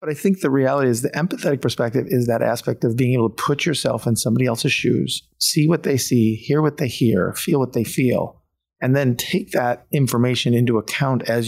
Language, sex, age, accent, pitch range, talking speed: English, male, 40-59, American, 115-140 Hz, 220 wpm